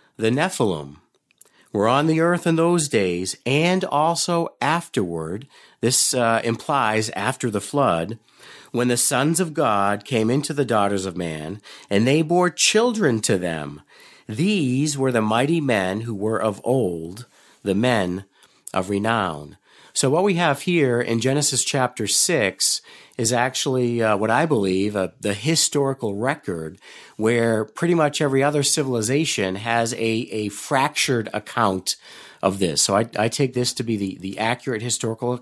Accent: American